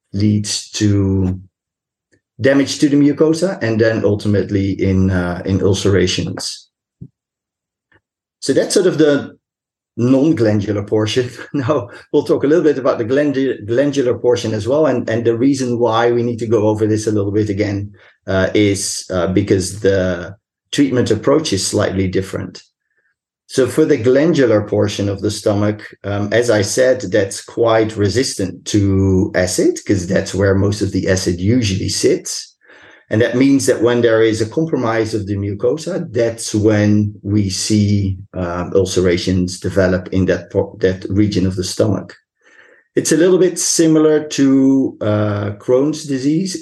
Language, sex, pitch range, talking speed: English, male, 95-130 Hz, 150 wpm